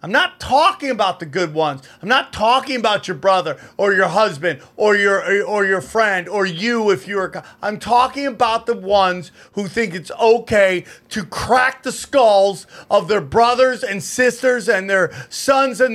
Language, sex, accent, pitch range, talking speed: English, male, American, 205-280 Hz, 185 wpm